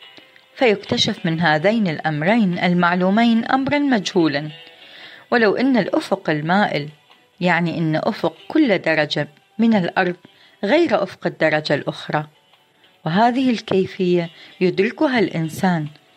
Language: Arabic